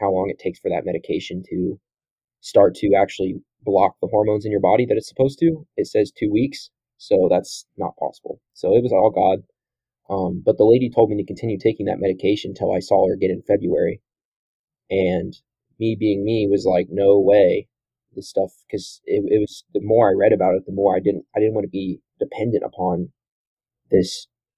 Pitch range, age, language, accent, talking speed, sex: 95-155 Hz, 20-39, English, American, 205 wpm, male